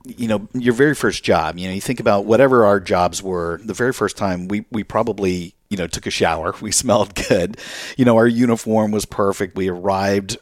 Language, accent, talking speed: English, American, 220 wpm